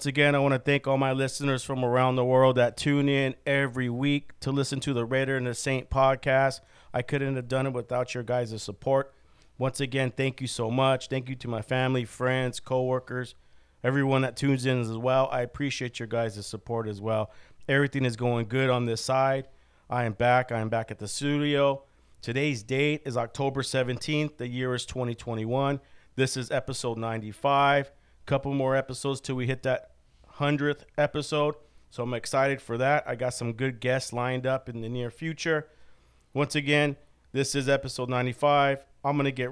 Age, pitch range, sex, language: 40-59, 120-140 Hz, male, English